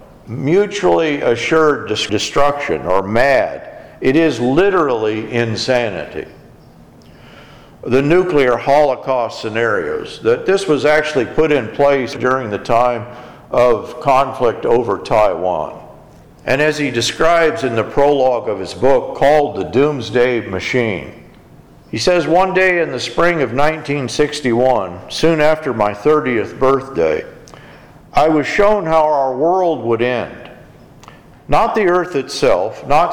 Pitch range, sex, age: 120-160 Hz, male, 50-69